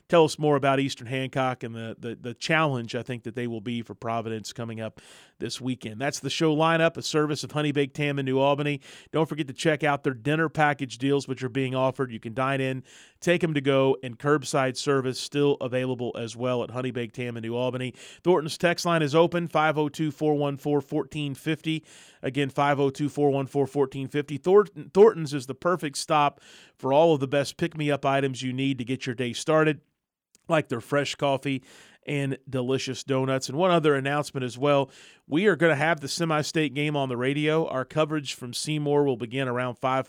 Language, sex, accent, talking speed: English, male, American, 195 wpm